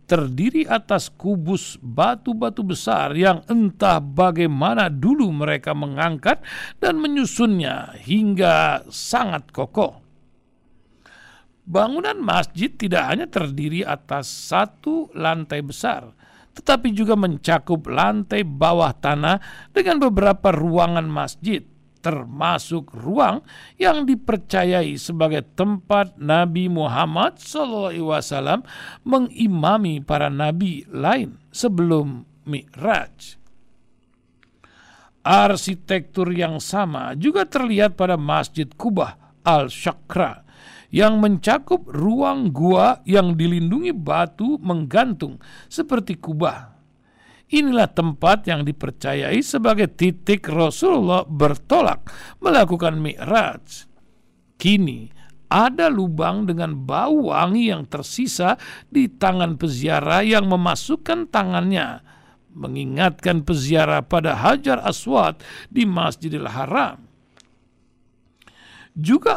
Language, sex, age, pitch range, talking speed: Indonesian, male, 60-79, 160-220 Hz, 90 wpm